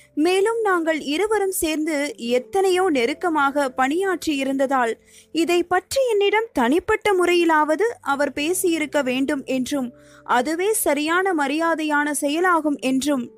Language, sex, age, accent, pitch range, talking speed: Tamil, female, 20-39, native, 270-360 Hz, 100 wpm